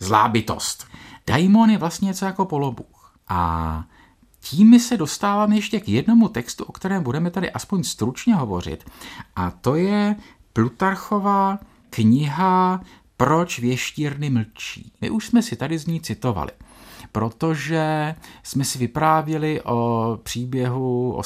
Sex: male